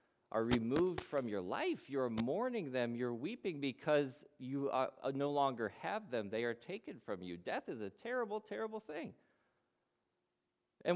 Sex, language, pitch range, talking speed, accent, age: male, English, 110-185 Hz, 155 wpm, American, 40-59